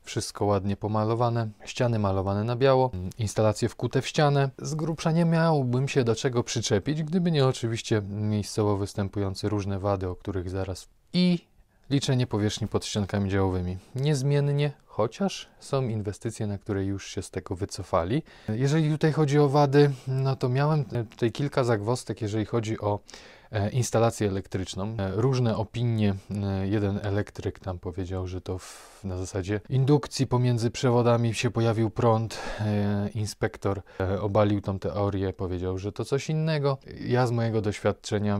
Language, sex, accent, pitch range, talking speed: Polish, male, native, 100-125 Hz, 145 wpm